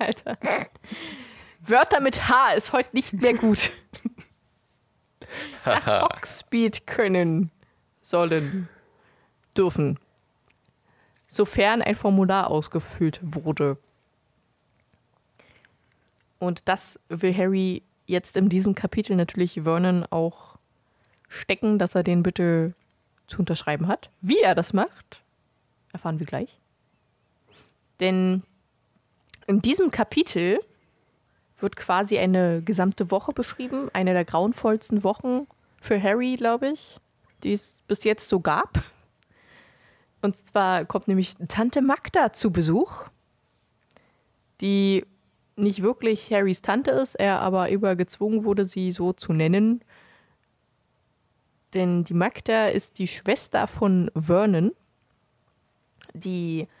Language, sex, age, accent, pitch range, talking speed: German, female, 20-39, German, 175-215 Hz, 105 wpm